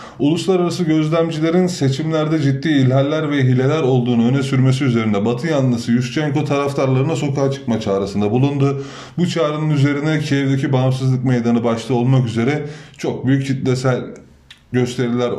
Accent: native